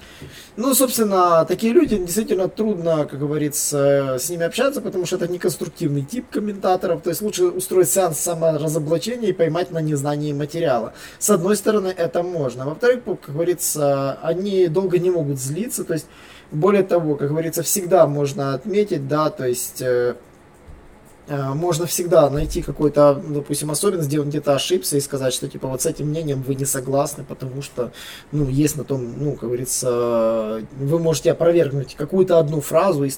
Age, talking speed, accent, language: 20-39, 165 wpm, native, Russian